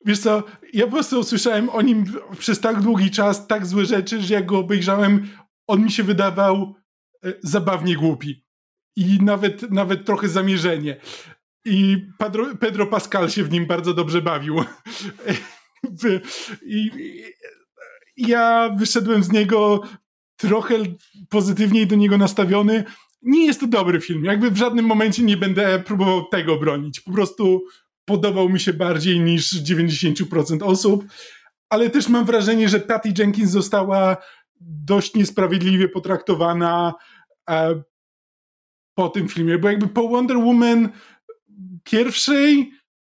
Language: Polish